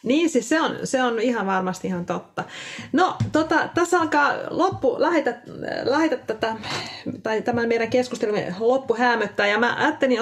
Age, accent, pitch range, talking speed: 30-49, native, 195-255 Hz, 140 wpm